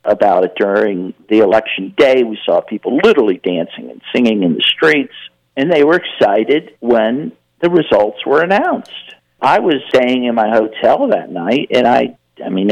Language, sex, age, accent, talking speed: English, male, 50-69, American, 175 wpm